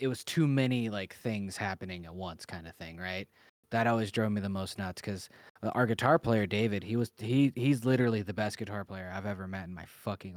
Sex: male